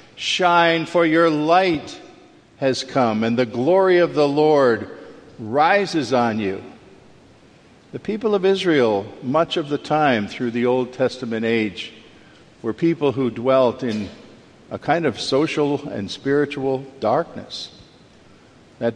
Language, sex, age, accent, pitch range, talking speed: English, male, 50-69, American, 120-145 Hz, 130 wpm